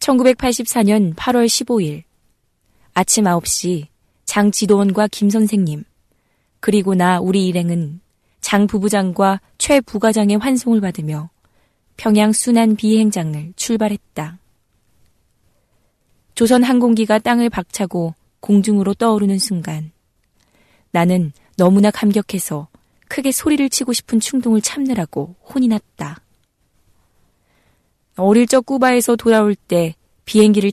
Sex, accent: female, native